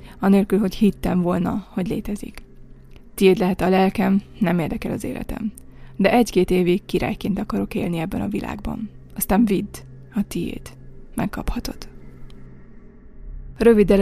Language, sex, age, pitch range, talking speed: Hungarian, female, 20-39, 185-215 Hz, 125 wpm